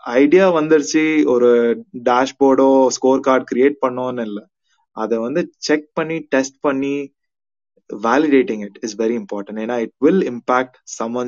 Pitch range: 115-150 Hz